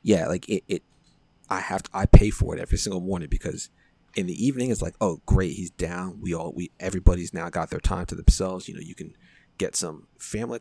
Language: English